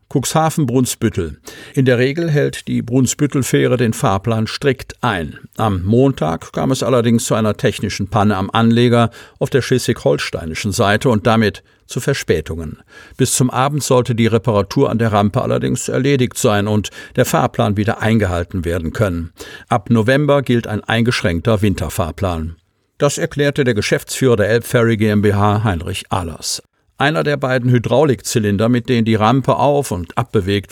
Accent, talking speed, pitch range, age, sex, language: German, 145 wpm, 100-130 Hz, 50-69, male, German